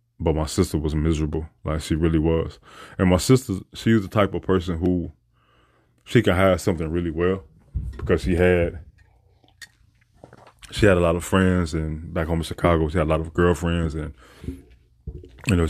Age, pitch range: 20-39, 80-90 Hz